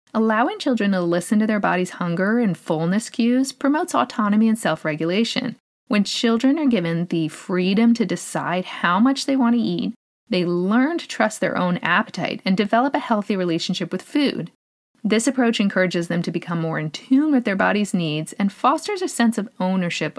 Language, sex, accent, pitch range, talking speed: English, female, American, 180-245 Hz, 185 wpm